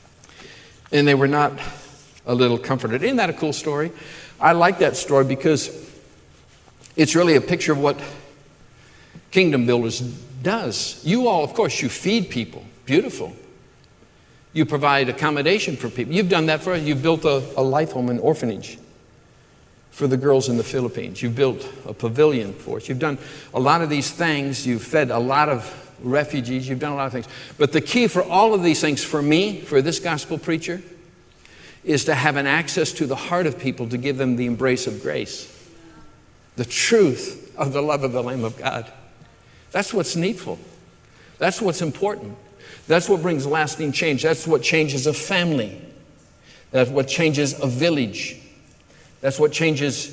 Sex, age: male, 60-79